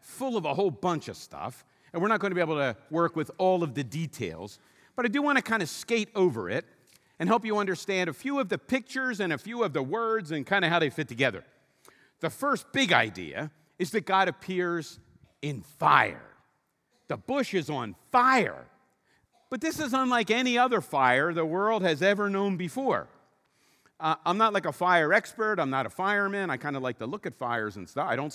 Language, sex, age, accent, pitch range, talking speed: English, male, 50-69, American, 160-225 Hz, 220 wpm